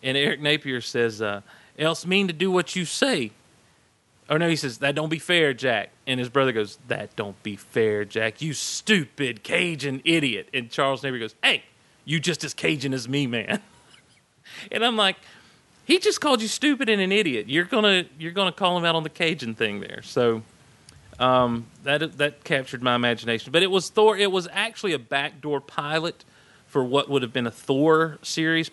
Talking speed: 195 wpm